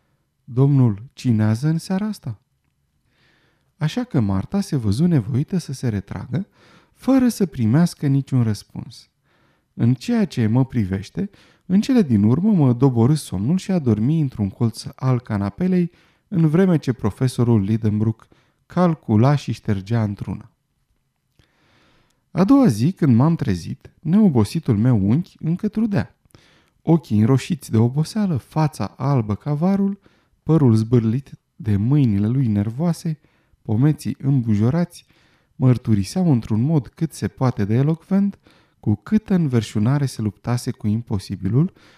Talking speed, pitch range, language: 125 wpm, 110-160 Hz, Romanian